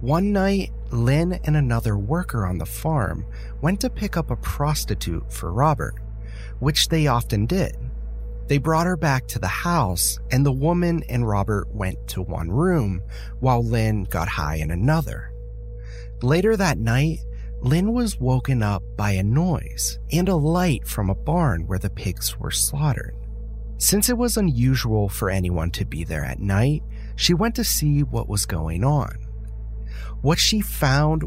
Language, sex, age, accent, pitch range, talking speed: English, male, 30-49, American, 95-155 Hz, 165 wpm